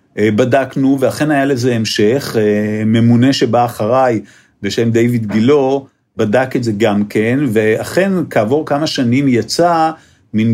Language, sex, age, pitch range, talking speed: Hebrew, male, 50-69, 110-155 Hz, 125 wpm